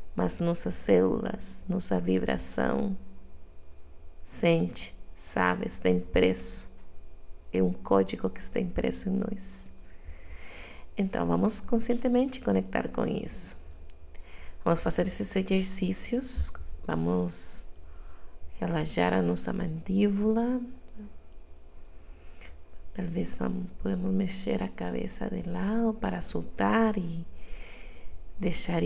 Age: 30-49